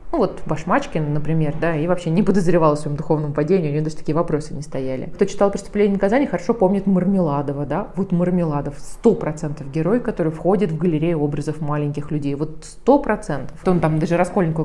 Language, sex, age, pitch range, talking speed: Russian, female, 20-39, 155-190 Hz, 195 wpm